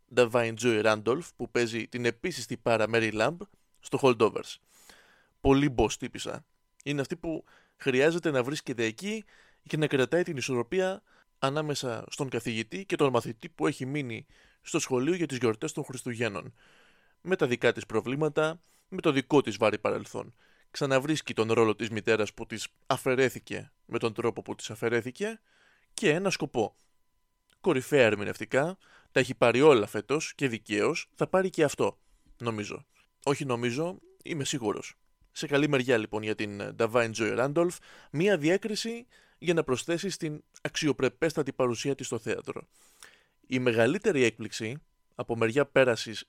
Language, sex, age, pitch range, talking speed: Greek, male, 20-39, 115-165 Hz, 150 wpm